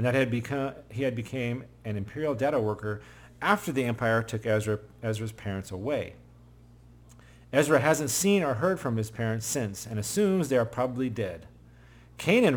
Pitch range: 110-135 Hz